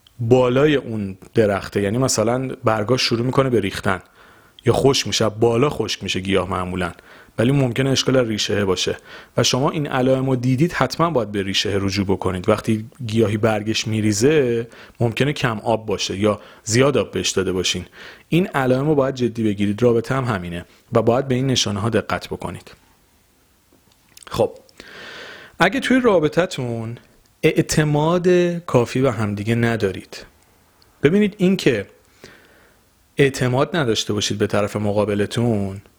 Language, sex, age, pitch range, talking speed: Persian, male, 40-59, 105-135 Hz, 135 wpm